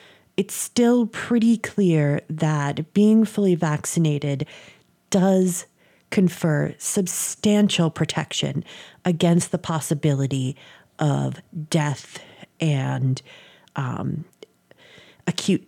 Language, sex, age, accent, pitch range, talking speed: English, female, 30-49, American, 150-190 Hz, 75 wpm